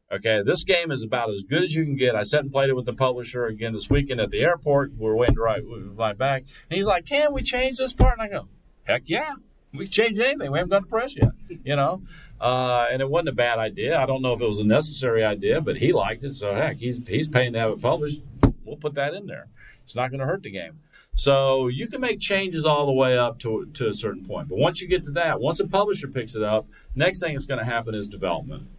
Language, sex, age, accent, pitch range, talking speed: English, male, 40-59, American, 110-150 Hz, 275 wpm